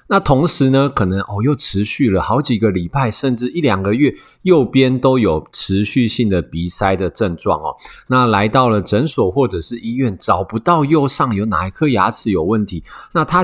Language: Chinese